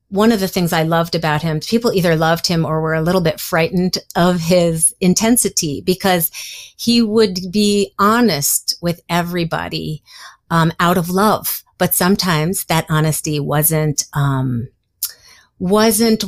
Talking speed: 145 wpm